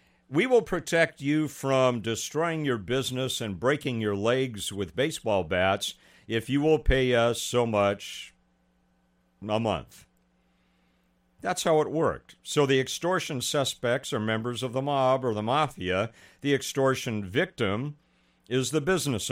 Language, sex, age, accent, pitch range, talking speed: English, male, 60-79, American, 95-145 Hz, 145 wpm